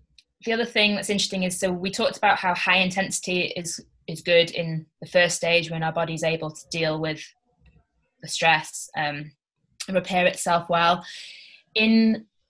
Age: 20-39